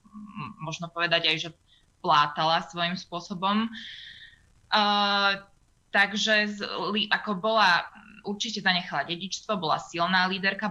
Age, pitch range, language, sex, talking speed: 20-39, 165-190 Hz, Slovak, female, 105 wpm